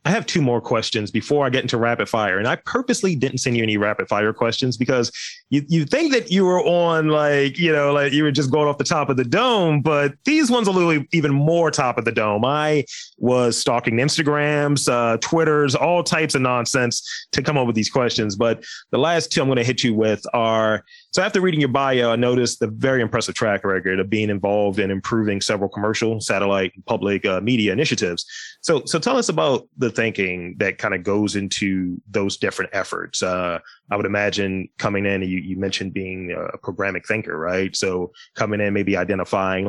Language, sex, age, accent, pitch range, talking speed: English, male, 30-49, American, 100-150 Hz, 210 wpm